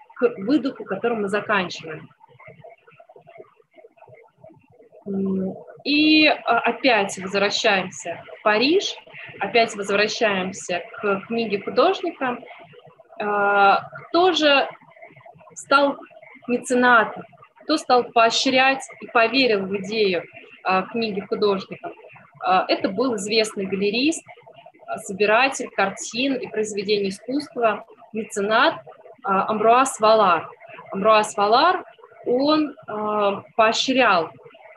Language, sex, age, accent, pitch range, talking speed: Russian, female, 20-39, native, 205-265 Hz, 75 wpm